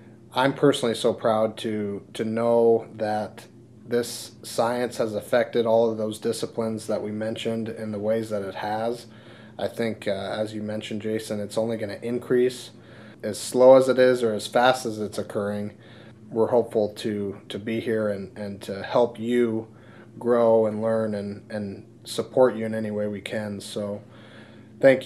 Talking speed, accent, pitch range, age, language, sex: 175 wpm, American, 110-120 Hz, 30-49, English, male